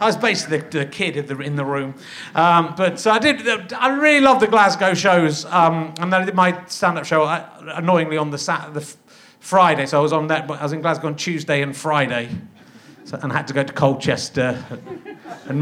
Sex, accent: male, British